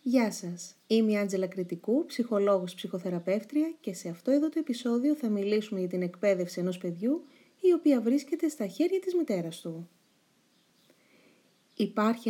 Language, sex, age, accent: Greek, female, 30-49, native